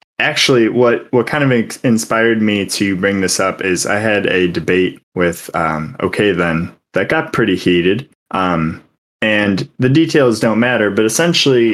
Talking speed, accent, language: 165 wpm, American, English